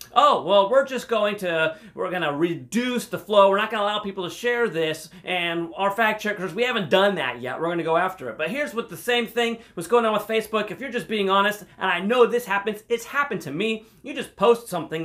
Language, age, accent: English, 30-49, American